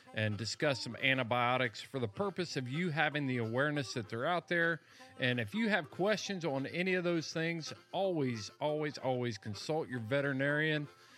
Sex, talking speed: male, 170 wpm